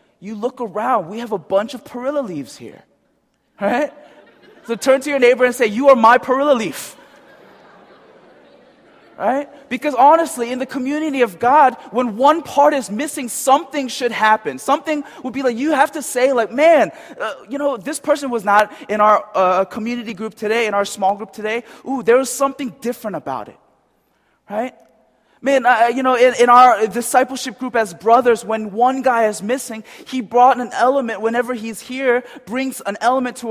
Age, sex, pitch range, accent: 20-39, male, 215-265 Hz, American